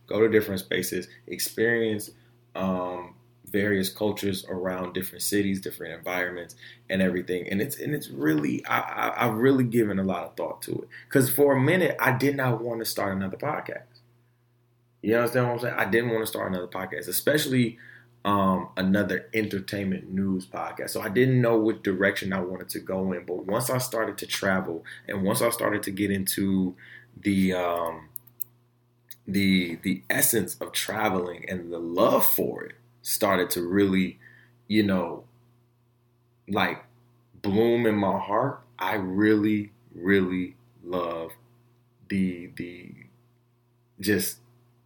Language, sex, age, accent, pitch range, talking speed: English, male, 20-39, American, 95-120 Hz, 155 wpm